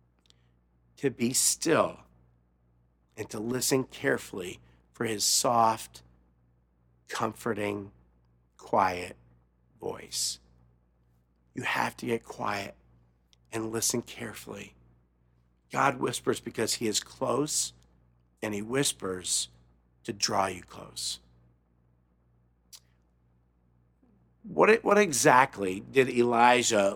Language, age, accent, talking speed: English, 50-69, American, 85 wpm